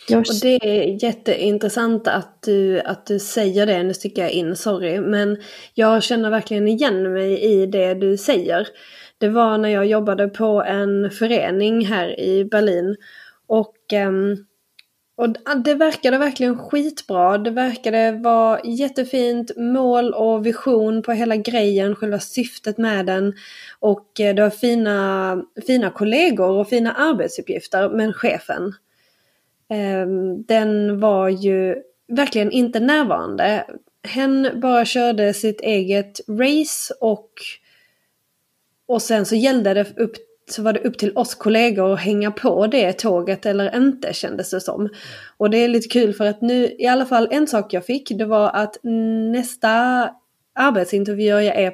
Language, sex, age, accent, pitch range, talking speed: Swedish, female, 20-39, native, 200-235 Hz, 145 wpm